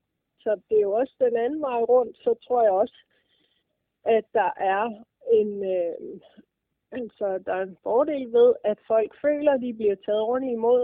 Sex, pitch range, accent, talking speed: female, 200-250 Hz, native, 185 wpm